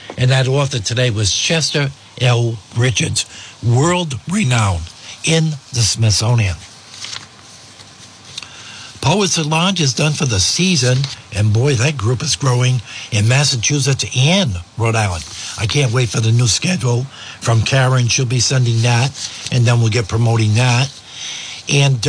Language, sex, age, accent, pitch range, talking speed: English, male, 60-79, American, 110-135 Hz, 140 wpm